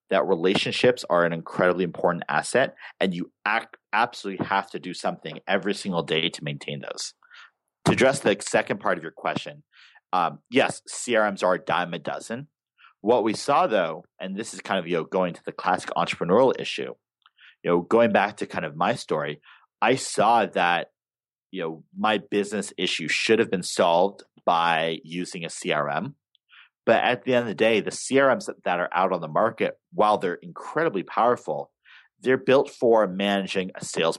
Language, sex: English, male